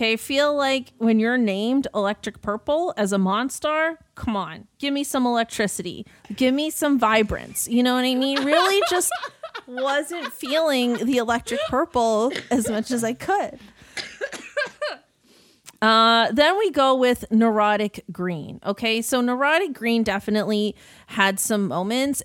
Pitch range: 210-270 Hz